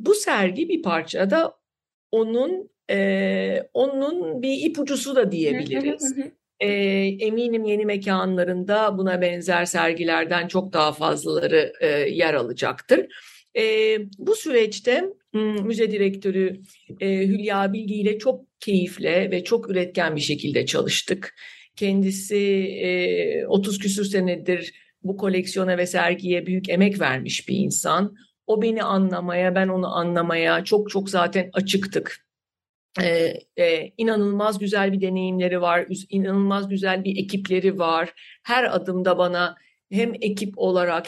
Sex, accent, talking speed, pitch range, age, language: female, native, 120 wpm, 180-225 Hz, 50-69, Turkish